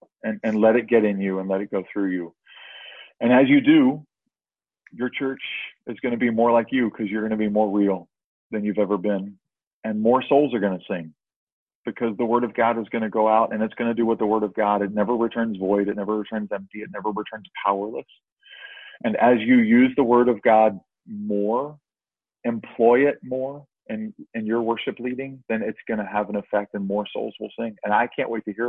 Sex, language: male, English